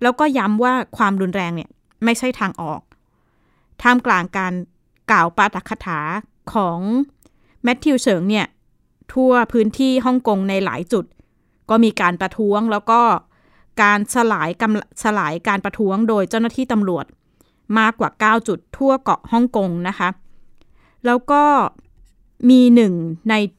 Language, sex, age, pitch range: Thai, female, 20-39, 185-230 Hz